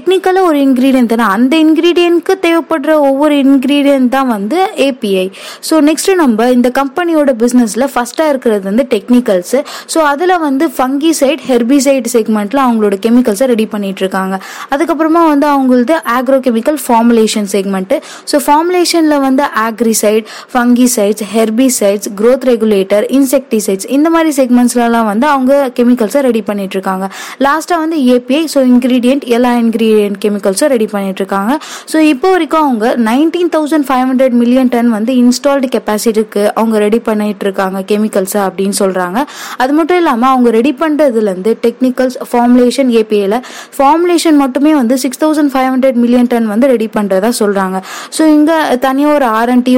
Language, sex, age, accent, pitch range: Tamil, female, 20-39, native, 225-285 Hz